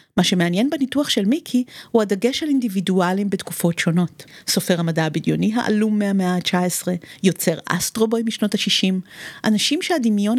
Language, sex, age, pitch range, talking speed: Hebrew, female, 50-69, 175-235 Hz, 135 wpm